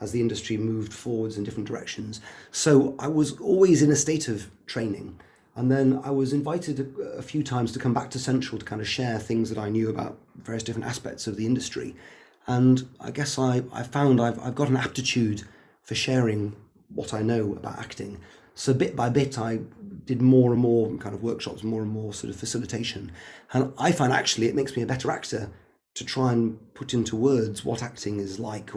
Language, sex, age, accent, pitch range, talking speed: English, male, 30-49, British, 110-135 Hz, 215 wpm